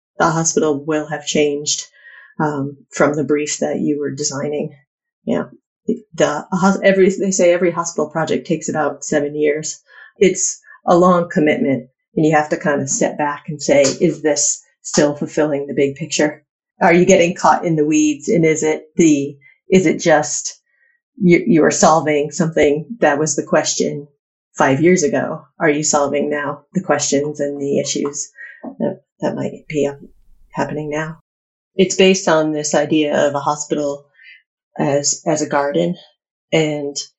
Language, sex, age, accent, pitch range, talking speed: English, female, 30-49, American, 145-170 Hz, 160 wpm